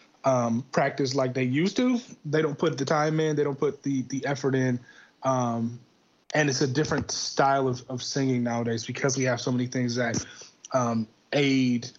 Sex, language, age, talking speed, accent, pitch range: male, English, 30-49, 190 wpm, American, 125-140 Hz